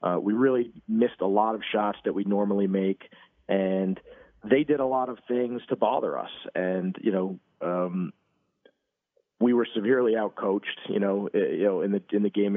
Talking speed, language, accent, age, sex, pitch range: 190 wpm, English, American, 40-59, male, 100-120 Hz